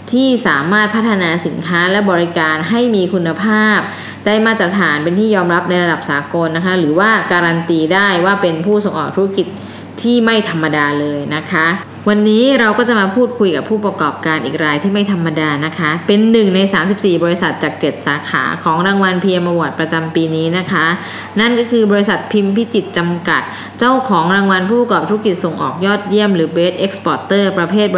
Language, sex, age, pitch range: Thai, female, 20-39, 170-210 Hz